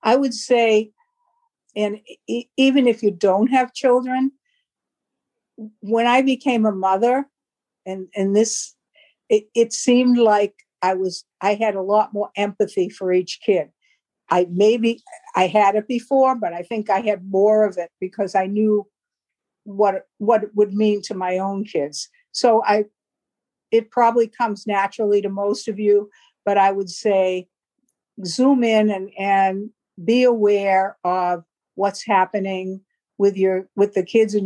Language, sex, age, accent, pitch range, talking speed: English, female, 60-79, American, 190-225 Hz, 155 wpm